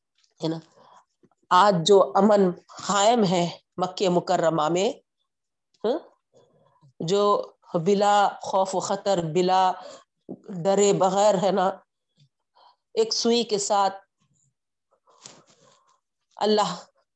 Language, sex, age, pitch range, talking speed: Urdu, female, 40-59, 185-230 Hz, 80 wpm